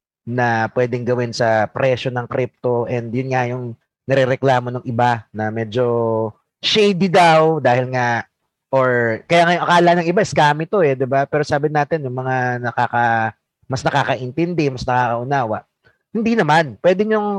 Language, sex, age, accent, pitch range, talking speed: Filipino, male, 30-49, native, 125-180 Hz, 155 wpm